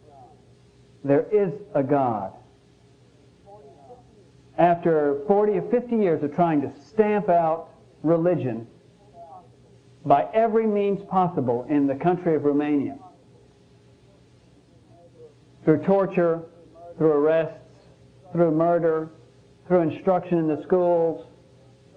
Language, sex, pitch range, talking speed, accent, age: English, male, 145-190 Hz, 95 wpm, American, 50-69